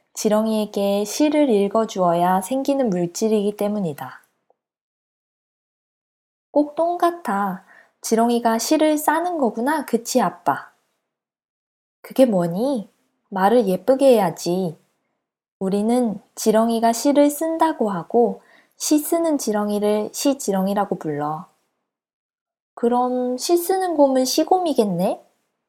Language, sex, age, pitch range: Korean, female, 20-39, 195-255 Hz